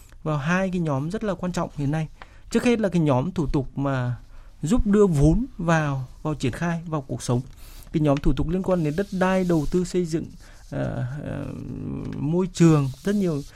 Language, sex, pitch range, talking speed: Vietnamese, male, 135-185 Hz, 210 wpm